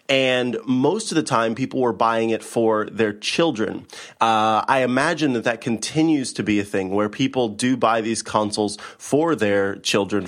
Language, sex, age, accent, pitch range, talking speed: English, male, 30-49, American, 105-145 Hz, 180 wpm